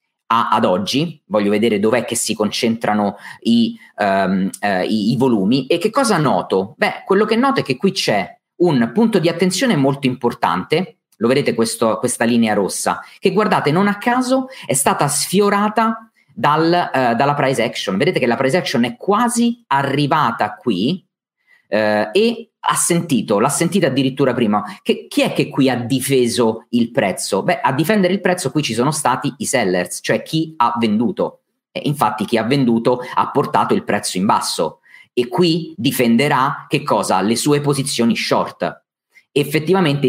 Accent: native